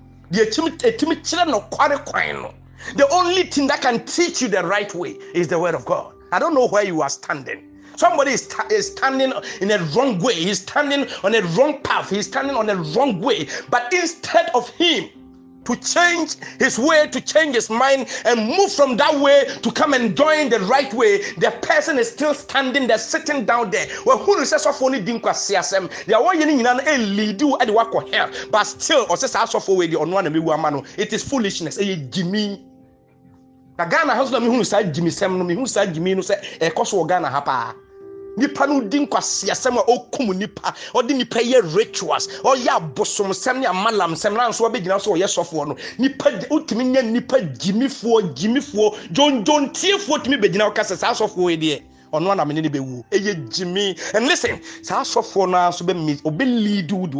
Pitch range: 180-280 Hz